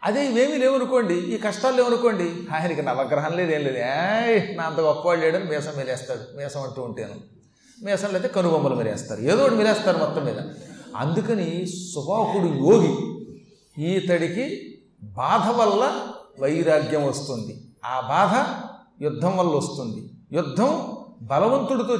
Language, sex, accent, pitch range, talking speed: Telugu, male, native, 150-215 Hz, 115 wpm